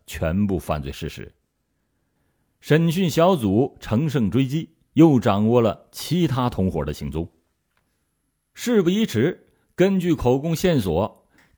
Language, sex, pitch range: Chinese, male, 100-160 Hz